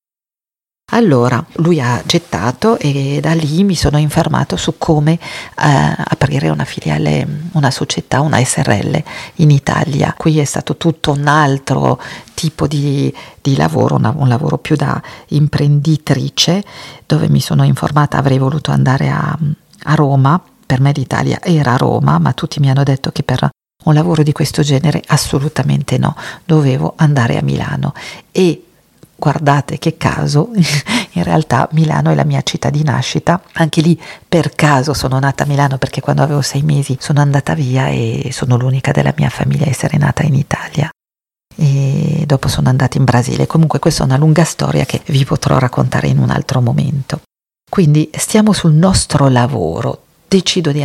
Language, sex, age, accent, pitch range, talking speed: Italian, female, 50-69, native, 135-160 Hz, 160 wpm